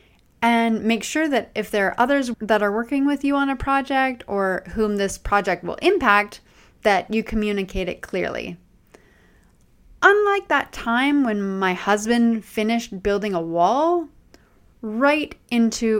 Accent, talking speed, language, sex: American, 145 wpm, English, female